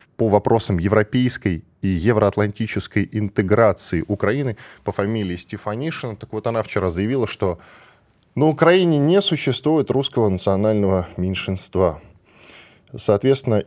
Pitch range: 95-135 Hz